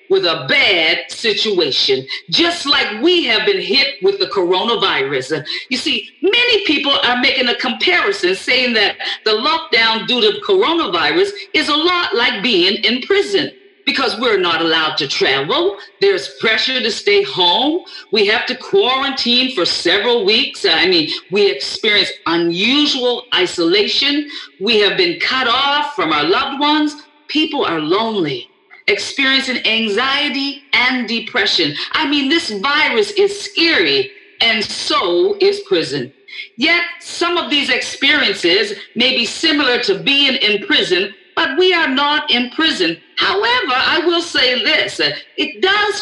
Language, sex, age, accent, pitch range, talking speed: English, female, 40-59, American, 255-390 Hz, 145 wpm